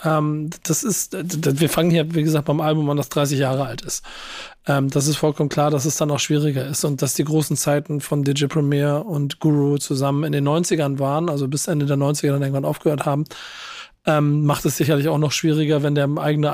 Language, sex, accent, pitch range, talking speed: German, male, German, 145-160 Hz, 210 wpm